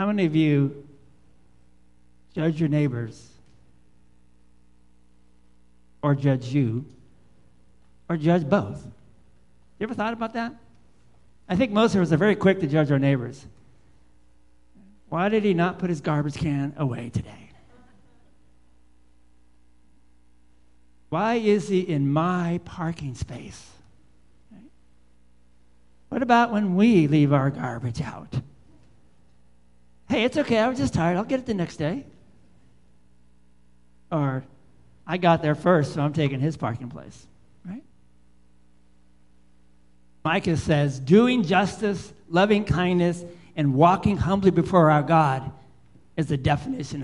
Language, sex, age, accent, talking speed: English, male, 60-79, American, 120 wpm